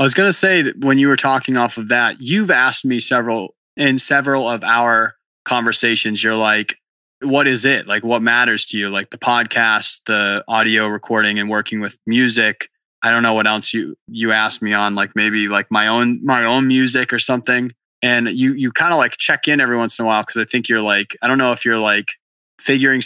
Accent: American